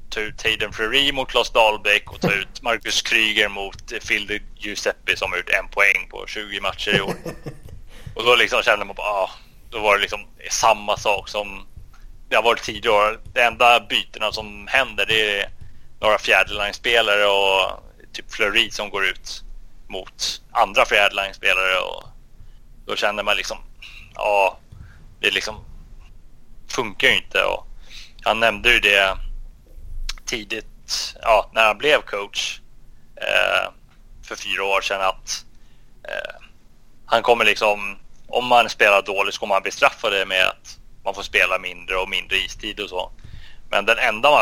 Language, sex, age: Swedish, male, 20-39